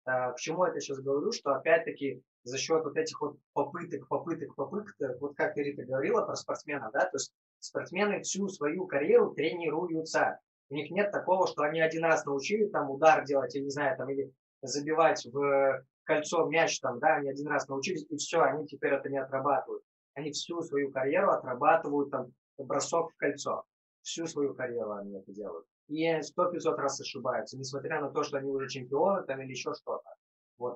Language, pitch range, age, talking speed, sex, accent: Russian, 135-160 Hz, 20-39, 185 wpm, male, native